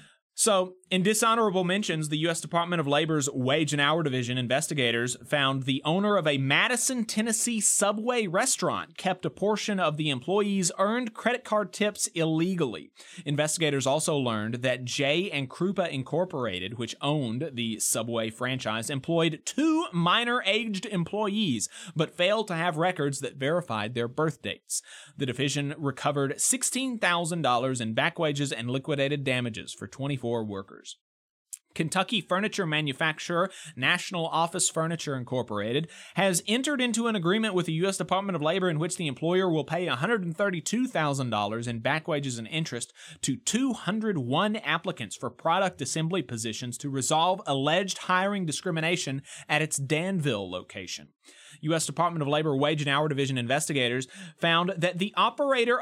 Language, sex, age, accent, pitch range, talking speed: English, male, 30-49, American, 140-200 Hz, 145 wpm